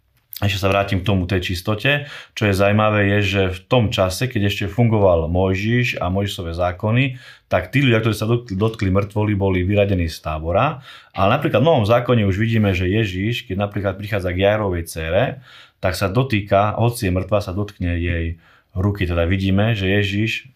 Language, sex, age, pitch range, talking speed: Slovak, male, 30-49, 95-110 Hz, 180 wpm